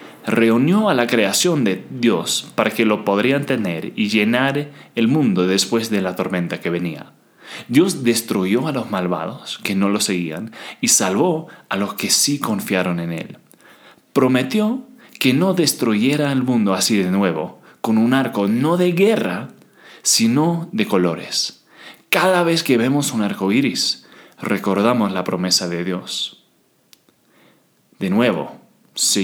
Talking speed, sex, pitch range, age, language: 150 wpm, male, 95-155 Hz, 30-49, Spanish